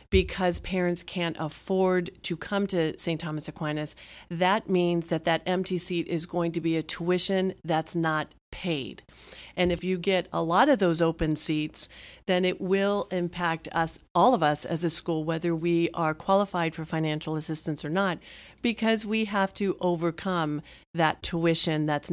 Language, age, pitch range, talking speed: English, 40-59, 160-190 Hz, 170 wpm